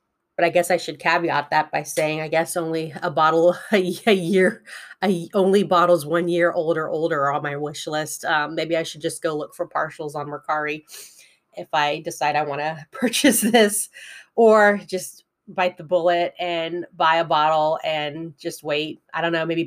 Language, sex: English, female